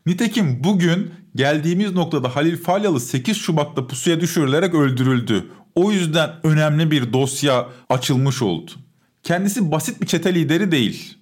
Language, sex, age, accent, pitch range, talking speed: Turkish, male, 50-69, native, 145-195 Hz, 130 wpm